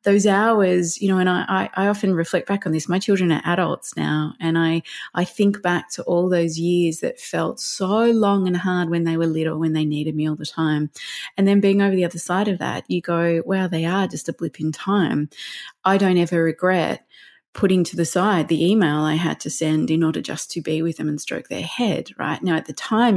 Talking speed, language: 240 wpm, English